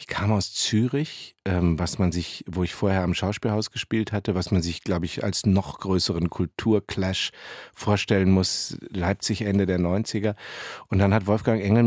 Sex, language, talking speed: male, German, 175 wpm